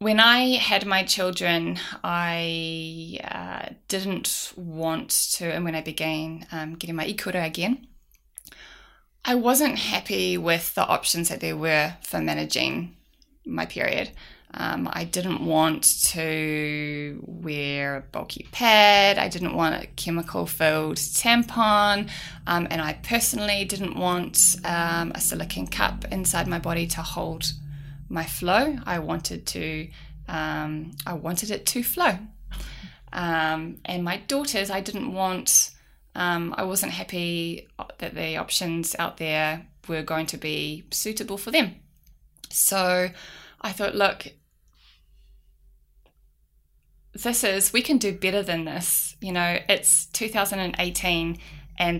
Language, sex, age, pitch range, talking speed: English, female, 20-39, 155-195 Hz, 130 wpm